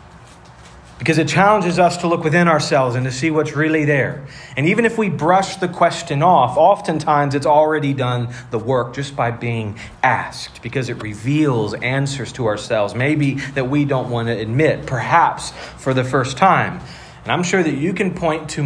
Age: 40-59